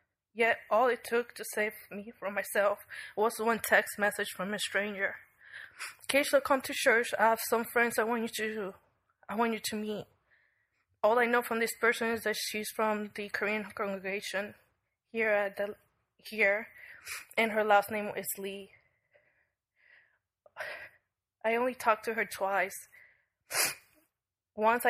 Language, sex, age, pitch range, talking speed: English, female, 20-39, 195-225 Hz, 155 wpm